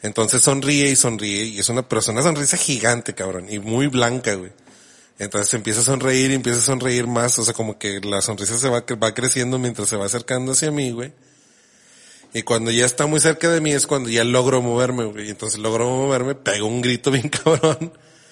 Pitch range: 105-130 Hz